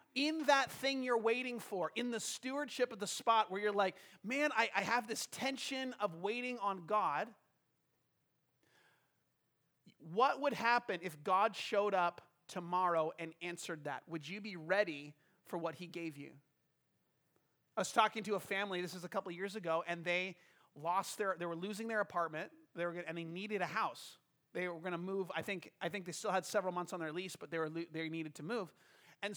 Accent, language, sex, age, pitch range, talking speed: American, English, male, 30-49, 170-225 Hz, 200 wpm